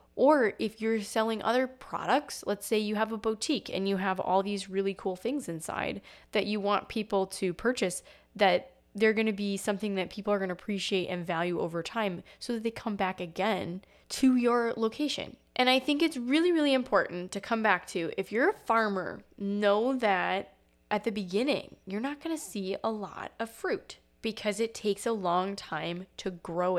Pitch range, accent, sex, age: 185-230 Hz, American, female, 10-29